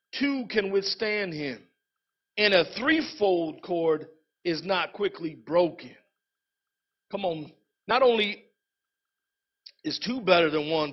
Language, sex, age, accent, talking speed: English, male, 50-69, American, 115 wpm